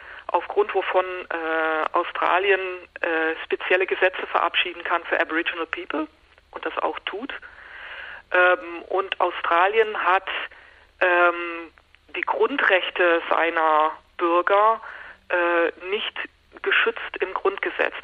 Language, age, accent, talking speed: German, 40-59, German, 100 wpm